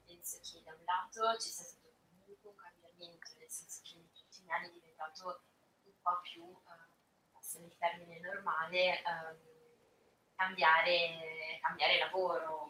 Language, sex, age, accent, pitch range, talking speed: Italian, female, 20-39, native, 160-180 Hz, 145 wpm